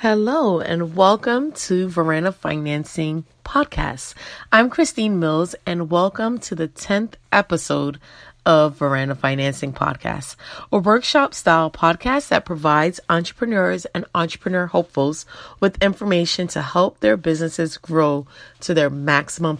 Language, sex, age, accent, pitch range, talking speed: English, female, 30-49, American, 155-205 Hz, 120 wpm